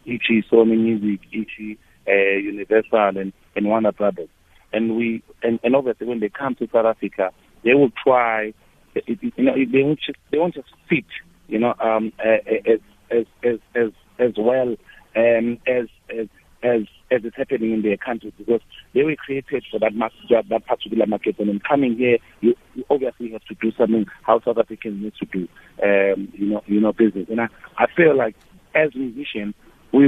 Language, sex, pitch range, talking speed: English, male, 105-120 Hz, 185 wpm